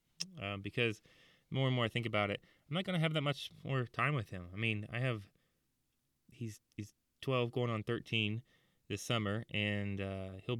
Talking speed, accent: 205 wpm, American